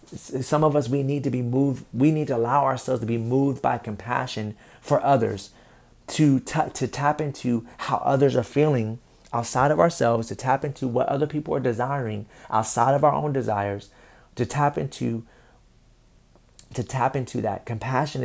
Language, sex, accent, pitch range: English, male, American, 120-140 Hz